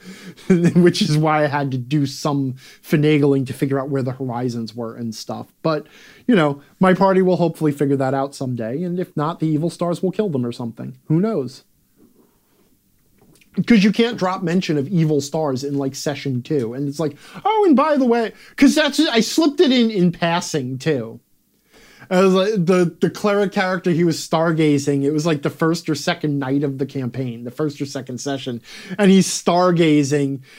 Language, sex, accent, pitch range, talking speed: English, male, American, 145-210 Hz, 195 wpm